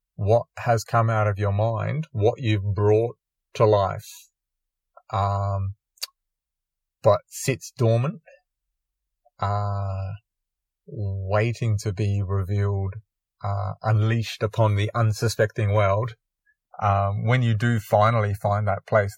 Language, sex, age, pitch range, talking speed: English, male, 30-49, 100-115 Hz, 110 wpm